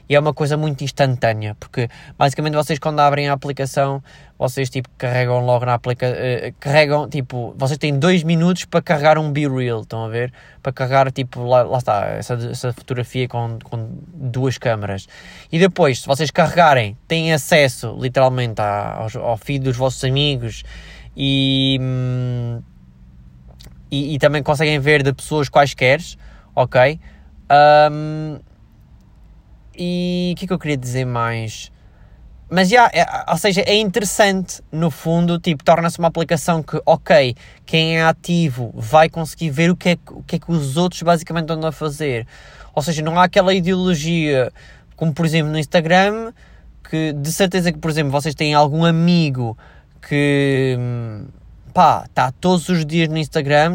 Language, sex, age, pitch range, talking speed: Portuguese, male, 20-39, 125-165 Hz, 160 wpm